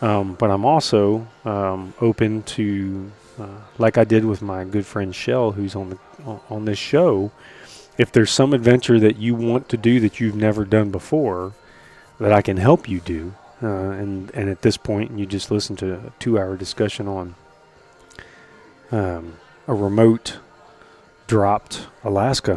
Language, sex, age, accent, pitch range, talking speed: English, male, 30-49, American, 105-120 Hz, 160 wpm